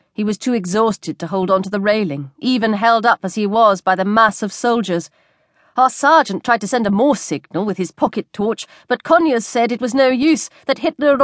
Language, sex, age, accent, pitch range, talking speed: English, female, 40-59, British, 185-255 Hz, 230 wpm